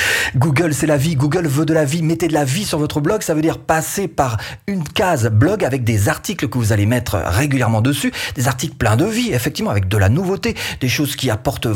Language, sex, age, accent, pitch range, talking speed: French, male, 40-59, French, 105-160 Hz, 240 wpm